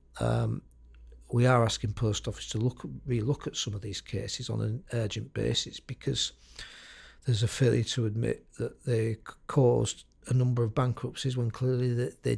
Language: English